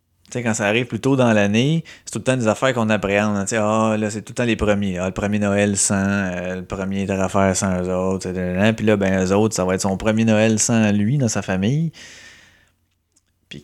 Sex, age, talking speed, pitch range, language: male, 30-49, 245 wpm, 95-130 Hz, French